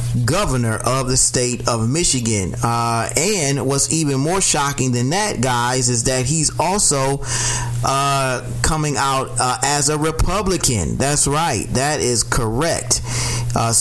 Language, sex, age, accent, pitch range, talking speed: English, male, 30-49, American, 120-140 Hz, 140 wpm